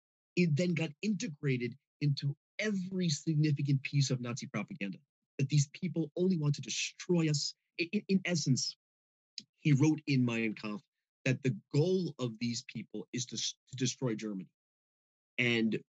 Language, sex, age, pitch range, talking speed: English, male, 30-49, 120-150 Hz, 145 wpm